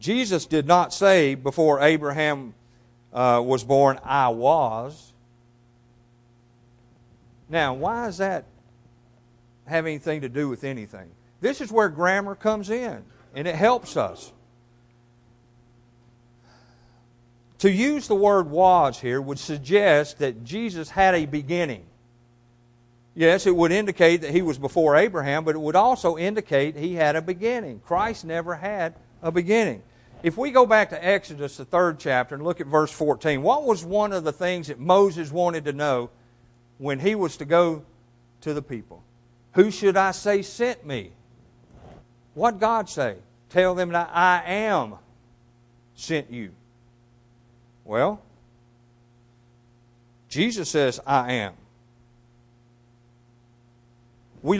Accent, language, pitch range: American, English, 120-175 Hz